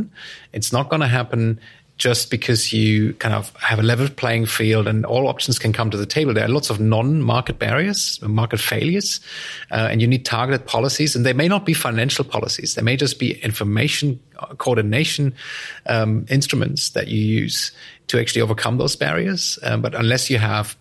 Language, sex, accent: English, male, German